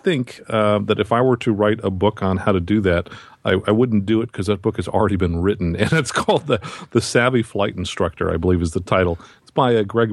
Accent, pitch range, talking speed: American, 90-105 Hz, 255 wpm